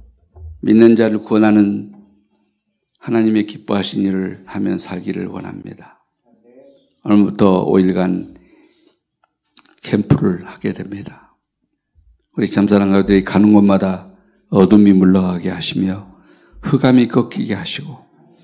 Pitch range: 95-110 Hz